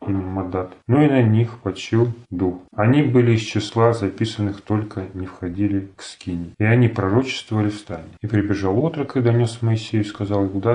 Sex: male